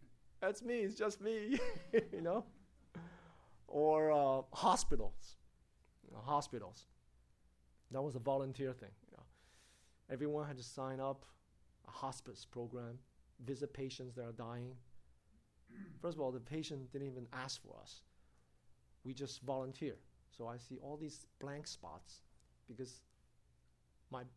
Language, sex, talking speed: English, male, 135 wpm